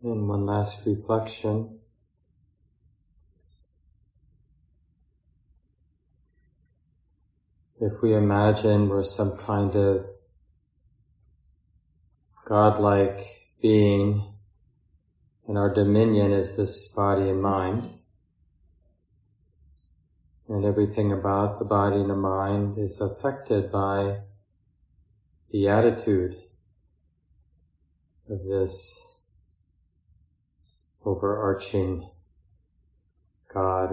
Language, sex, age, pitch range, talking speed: English, male, 30-49, 85-105 Hz, 65 wpm